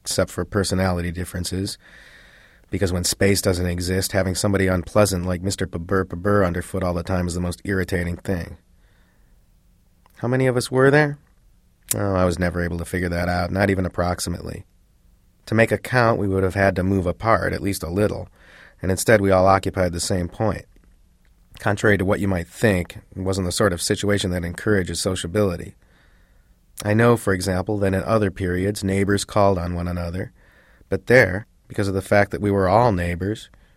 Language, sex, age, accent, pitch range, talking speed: English, male, 30-49, American, 90-105 Hz, 185 wpm